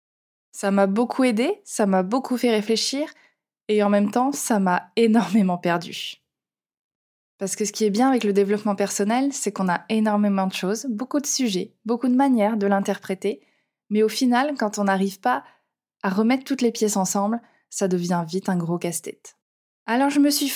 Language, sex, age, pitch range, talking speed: French, female, 20-39, 200-255 Hz, 185 wpm